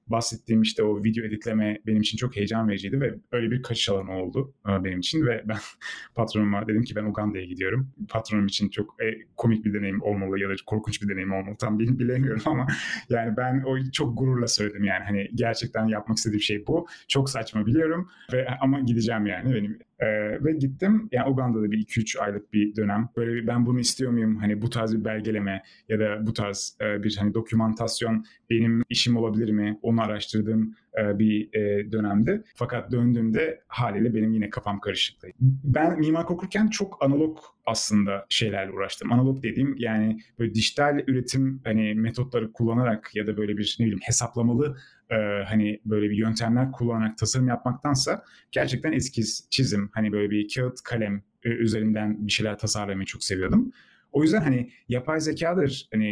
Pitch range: 105-125 Hz